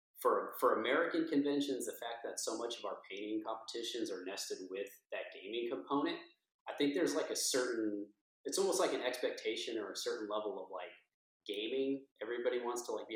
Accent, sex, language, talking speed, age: American, male, English, 190 wpm, 30-49